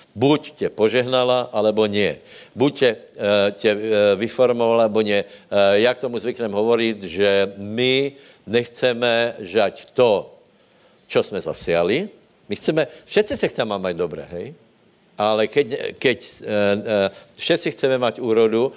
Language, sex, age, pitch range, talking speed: Slovak, male, 60-79, 105-135 Hz, 130 wpm